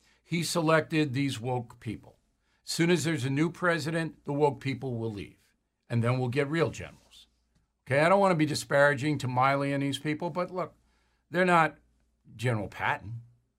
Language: English